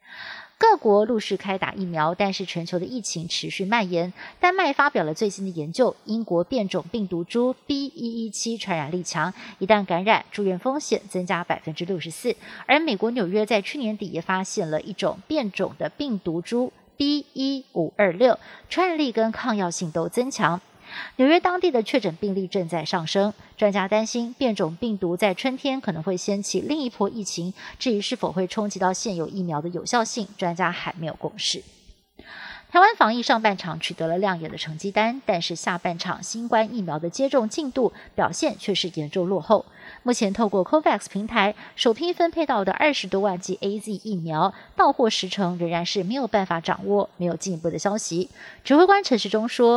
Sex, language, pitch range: female, Chinese, 180-240 Hz